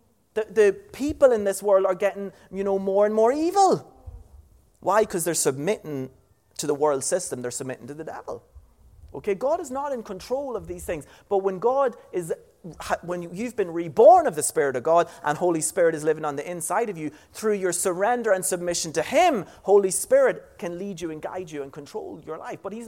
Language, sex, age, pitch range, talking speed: English, male, 30-49, 140-210 Hz, 210 wpm